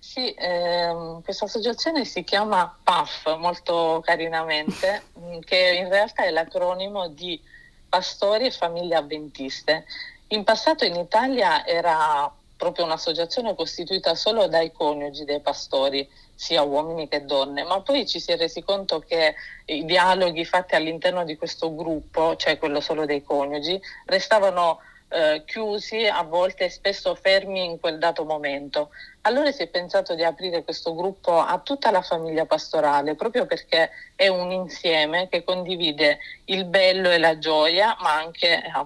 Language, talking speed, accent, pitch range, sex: Italian, 145 wpm, native, 155-195 Hz, female